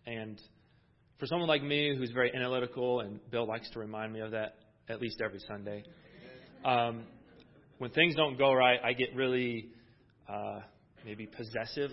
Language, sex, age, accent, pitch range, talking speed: English, male, 30-49, American, 110-135 Hz, 160 wpm